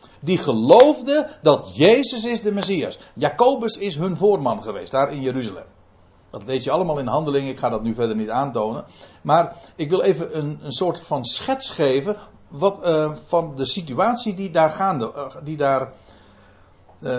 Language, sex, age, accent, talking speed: Dutch, male, 60-79, Dutch, 155 wpm